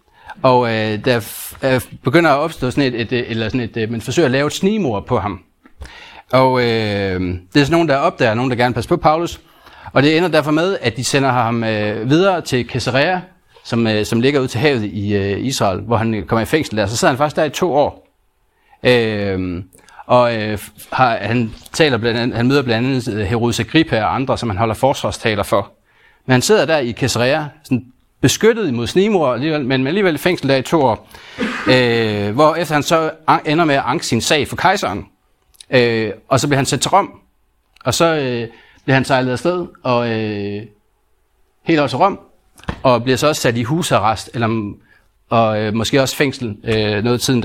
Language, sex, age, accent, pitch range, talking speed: Danish, male, 30-49, native, 110-150 Hz, 205 wpm